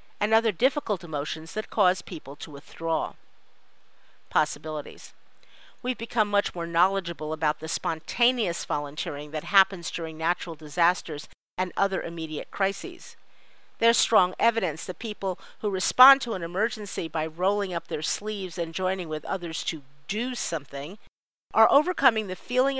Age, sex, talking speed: 50-69, female, 140 wpm